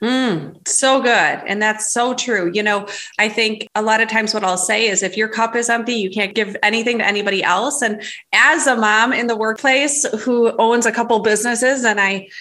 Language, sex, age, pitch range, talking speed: English, female, 30-49, 205-235 Hz, 220 wpm